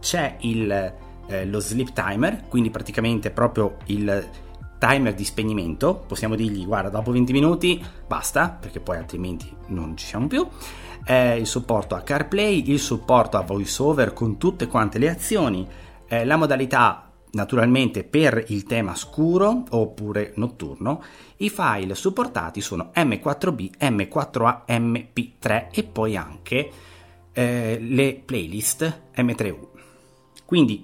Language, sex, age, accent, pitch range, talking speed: Italian, male, 30-49, native, 95-135 Hz, 130 wpm